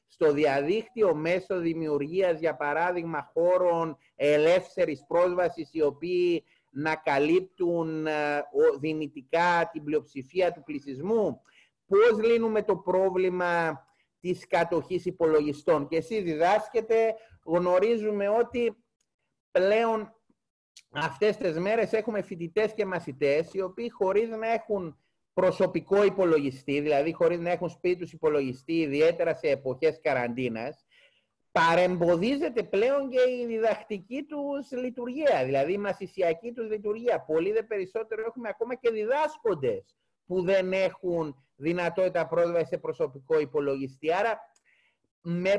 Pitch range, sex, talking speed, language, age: 160-225 Hz, male, 110 wpm, Greek, 30-49